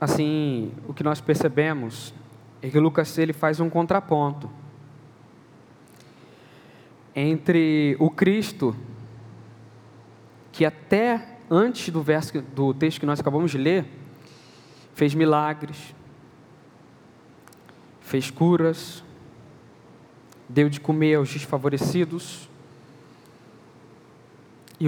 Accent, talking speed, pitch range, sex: Brazilian, 90 wpm, 125-160 Hz, male